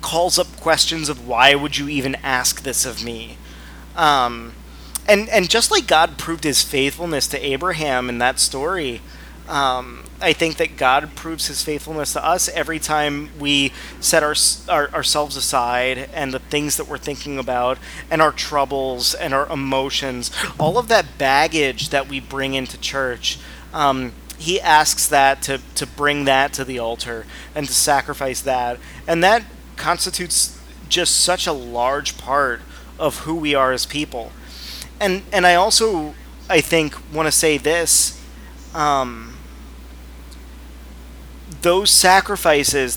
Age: 30-49